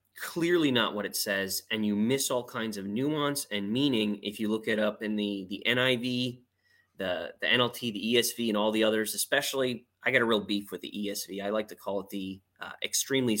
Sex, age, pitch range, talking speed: male, 20-39, 100-125 Hz, 220 wpm